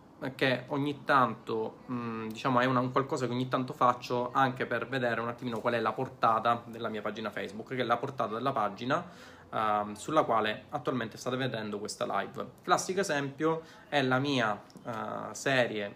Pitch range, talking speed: 115-140 Hz, 170 wpm